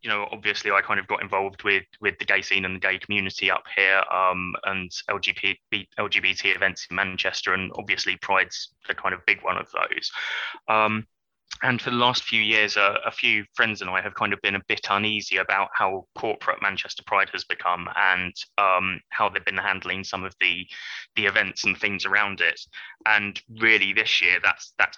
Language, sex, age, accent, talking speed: English, male, 10-29, British, 200 wpm